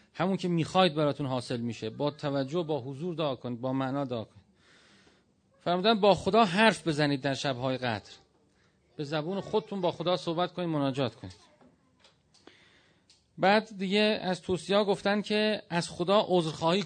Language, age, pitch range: Persian, 40-59, 135-180 Hz